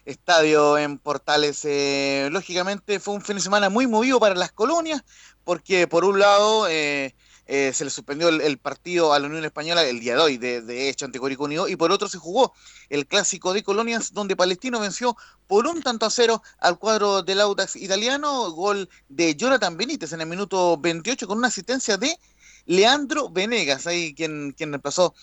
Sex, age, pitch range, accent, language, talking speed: male, 30-49, 145-205 Hz, Venezuelan, Spanish, 195 wpm